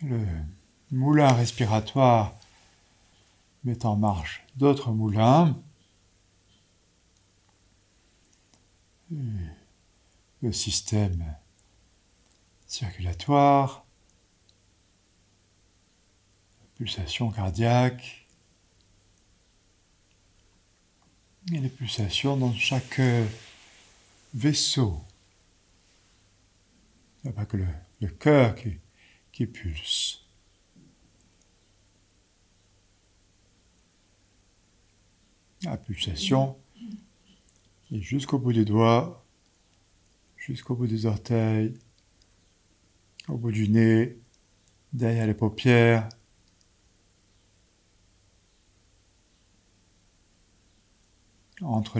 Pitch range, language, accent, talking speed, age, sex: 95-115 Hz, French, French, 60 wpm, 60-79, male